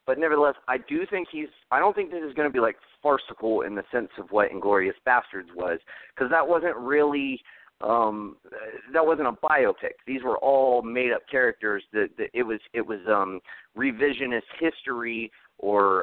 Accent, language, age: American, English, 30-49